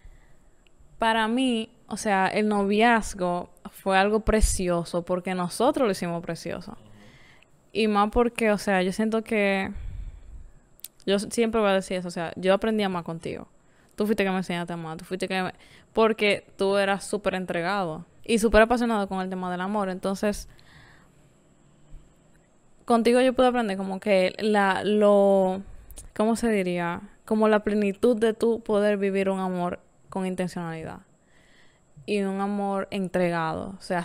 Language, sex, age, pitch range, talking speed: Spanish, female, 10-29, 180-210 Hz, 155 wpm